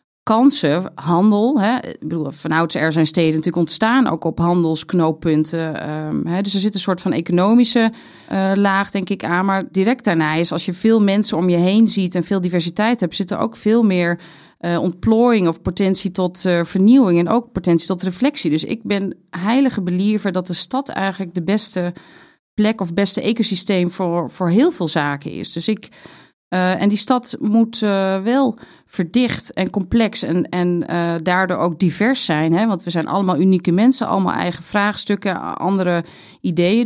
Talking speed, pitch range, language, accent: 185 wpm, 170-210 Hz, Dutch, Dutch